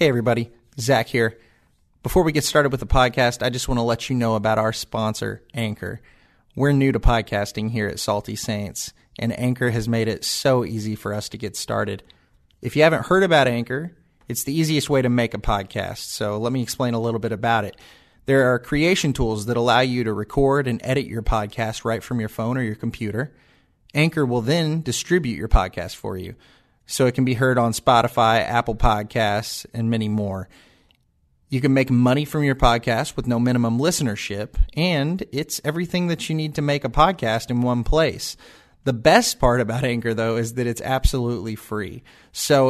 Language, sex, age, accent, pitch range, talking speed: English, male, 30-49, American, 110-135 Hz, 200 wpm